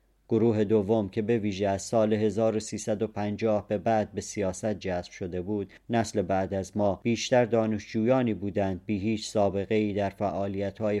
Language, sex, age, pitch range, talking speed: Persian, male, 40-59, 100-115 Hz, 145 wpm